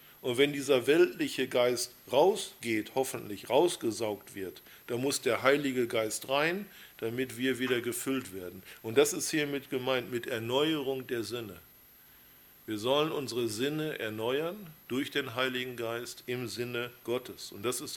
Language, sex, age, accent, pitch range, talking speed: German, male, 50-69, German, 115-140 Hz, 145 wpm